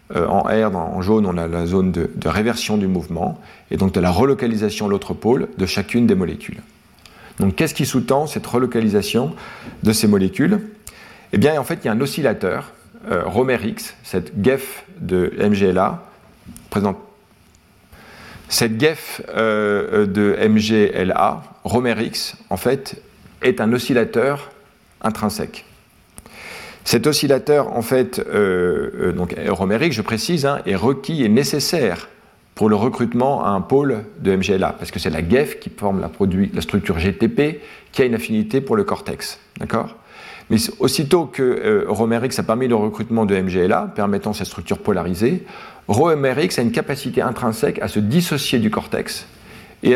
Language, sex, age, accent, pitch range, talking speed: French, male, 40-59, French, 100-130 Hz, 155 wpm